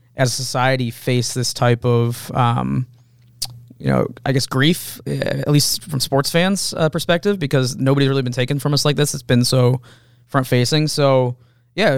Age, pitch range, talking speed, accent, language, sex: 20-39, 120-130 Hz, 180 wpm, American, English, male